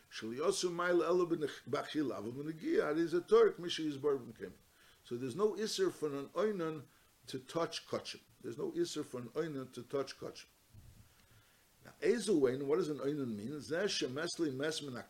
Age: 60-79